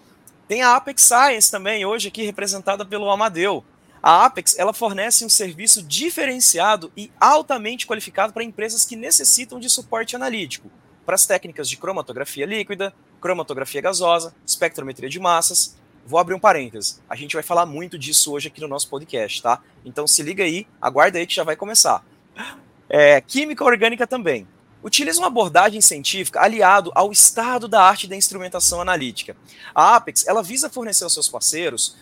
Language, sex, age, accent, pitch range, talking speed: Portuguese, male, 20-39, Brazilian, 175-230 Hz, 165 wpm